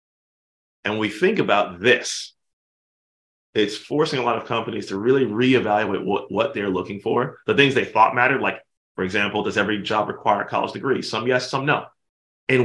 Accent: American